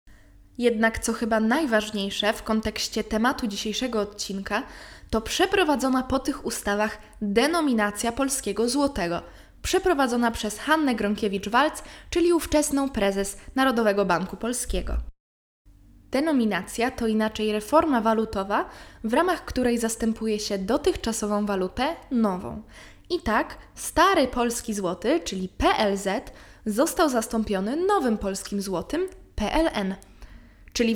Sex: female